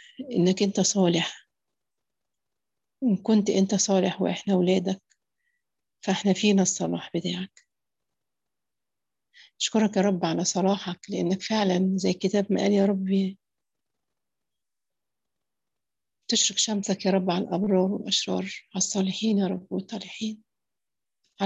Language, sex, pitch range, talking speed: Arabic, female, 185-205 Hz, 110 wpm